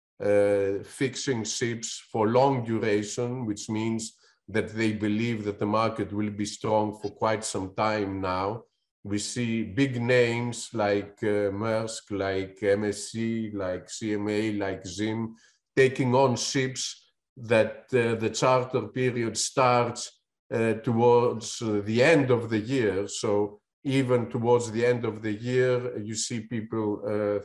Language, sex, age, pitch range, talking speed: English, male, 50-69, 105-125 Hz, 140 wpm